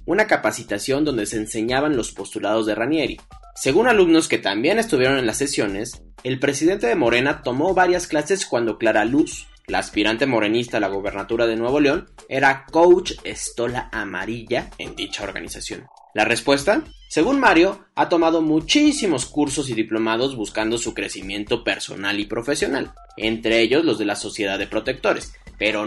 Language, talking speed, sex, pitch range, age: Spanish, 160 wpm, male, 110-155 Hz, 30-49